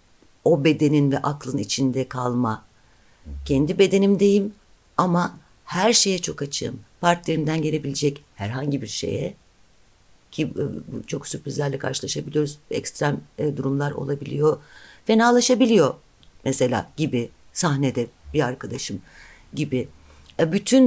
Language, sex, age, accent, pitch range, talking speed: Turkish, female, 60-79, native, 130-170 Hz, 95 wpm